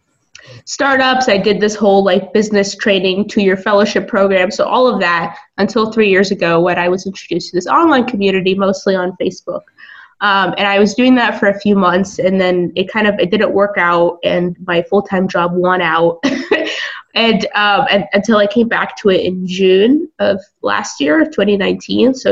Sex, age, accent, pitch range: female, 20-39, American, 185-215 Hz